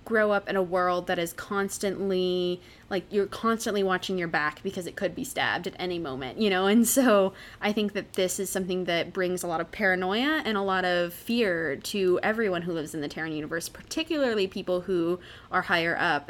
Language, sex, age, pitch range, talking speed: English, female, 20-39, 175-210 Hz, 210 wpm